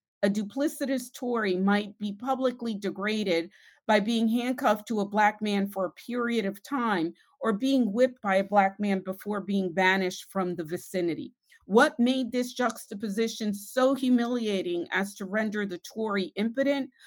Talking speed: 155 wpm